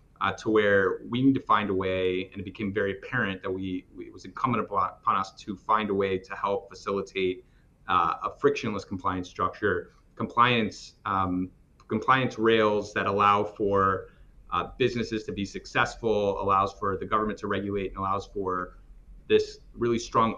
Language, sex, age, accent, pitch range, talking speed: English, male, 30-49, American, 95-110 Hz, 175 wpm